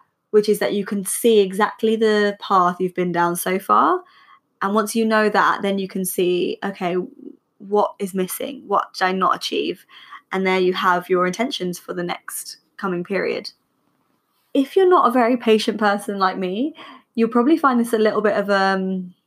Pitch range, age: 190-230 Hz, 20-39